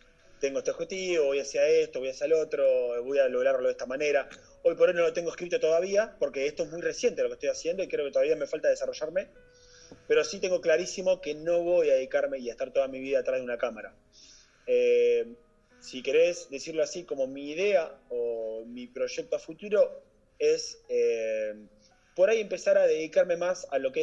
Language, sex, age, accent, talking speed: Spanish, male, 30-49, Argentinian, 205 wpm